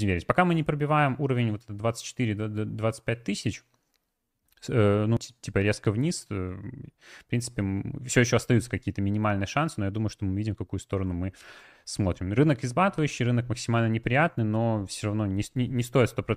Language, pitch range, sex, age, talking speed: Russian, 100-120 Hz, male, 20-39, 160 wpm